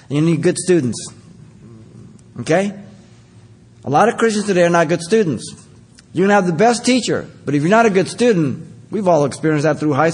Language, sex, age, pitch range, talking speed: English, male, 50-69, 120-175 Hz, 195 wpm